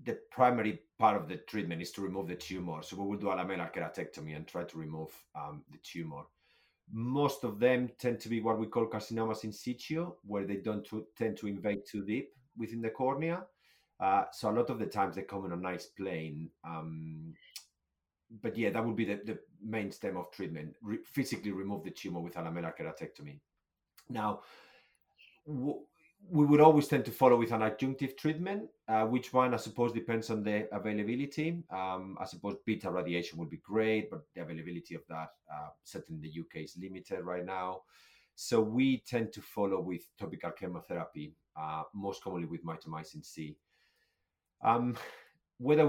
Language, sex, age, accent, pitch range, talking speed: English, male, 30-49, Spanish, 90-125 Hz, 185 wpm